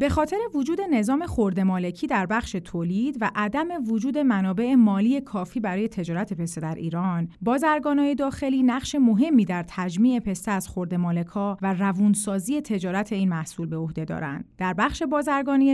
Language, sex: Persian, female